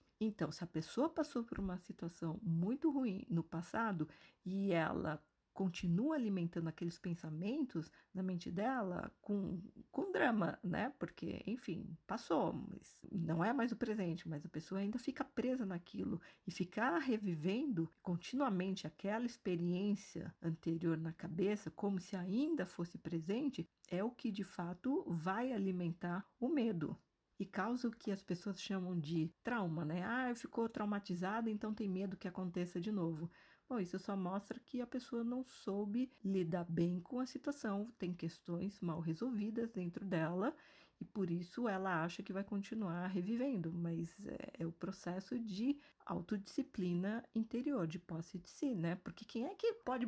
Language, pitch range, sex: Portuguese, 175-230 Hz, female